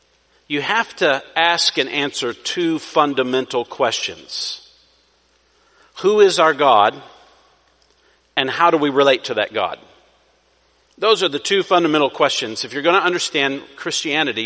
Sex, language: male, English